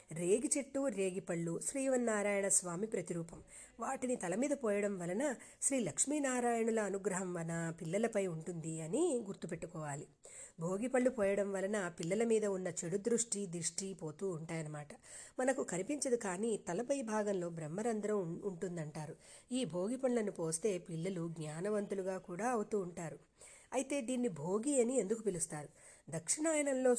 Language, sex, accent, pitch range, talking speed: Telugu, female, native, 175-235 Hz, 120 wpm